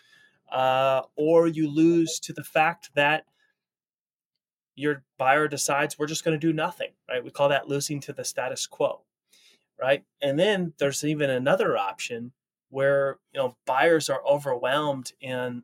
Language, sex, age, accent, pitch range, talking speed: English, male, 30-49, American, 125-155 Hz, 155 wpm